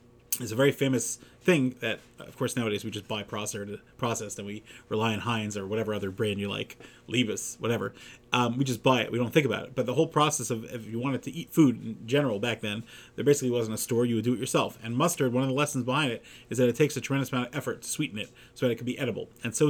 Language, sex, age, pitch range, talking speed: English, male, 30-49, 115-135 Hz, 270 wpm